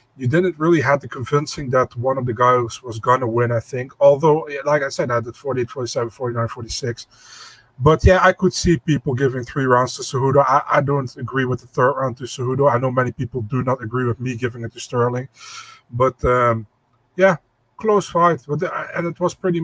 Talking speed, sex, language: 210 wpm, male, English